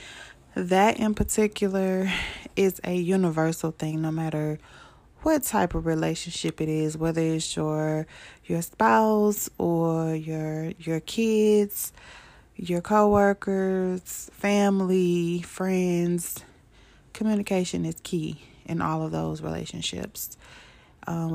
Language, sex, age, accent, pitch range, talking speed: English, female, 20-39, American, 160-180 Hz, 105 wpm